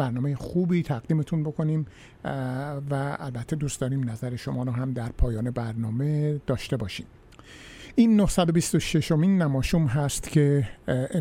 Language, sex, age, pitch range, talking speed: Persian, male, 50-69, 130-160 Hz, 120 wpm